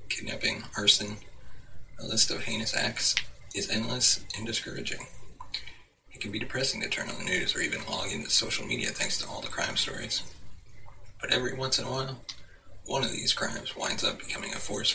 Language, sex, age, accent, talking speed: English, male, 30-49, American, 190 wpm